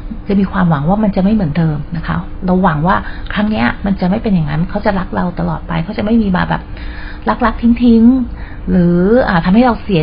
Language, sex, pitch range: Thai, female, 165-210 Hz